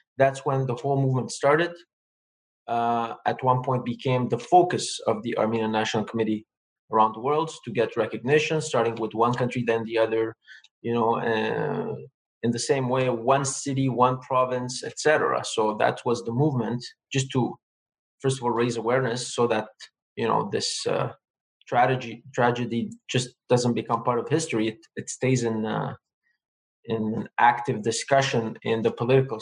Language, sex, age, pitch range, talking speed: English, male, 20-39, 115-135 Hz, 165 wpm